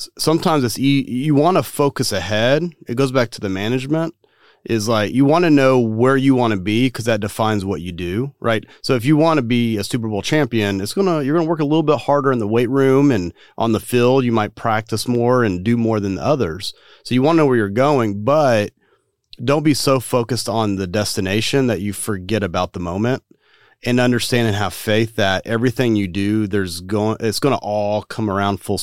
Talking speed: 225 wpm